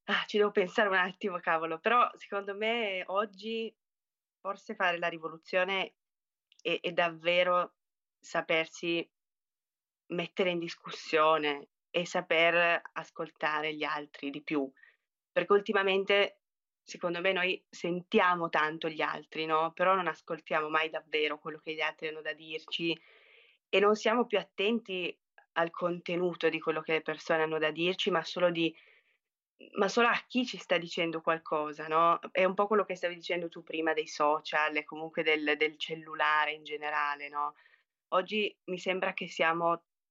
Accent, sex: native, female